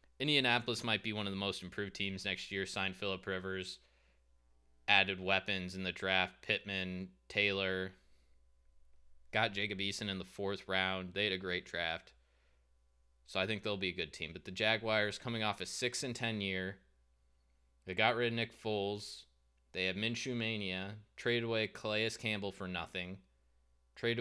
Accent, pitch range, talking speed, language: American, 65-105 Hz, 170 wpm, English